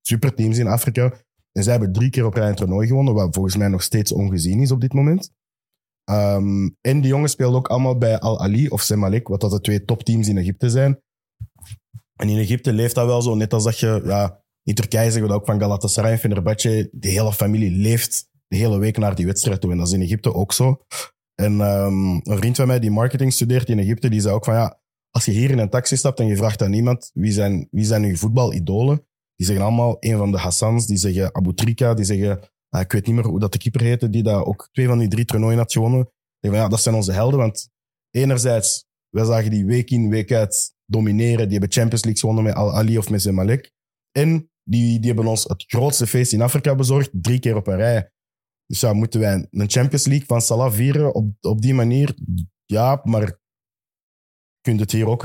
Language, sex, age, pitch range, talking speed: Dutch, male, 20-39, 100-125 Hz, 230 wpm